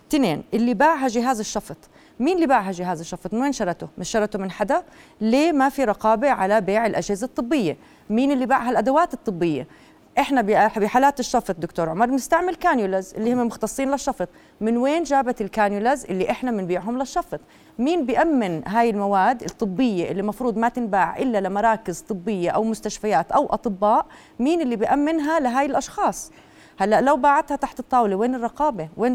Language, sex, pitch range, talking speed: Arabic, female, 200-265 Hz, 160 wpm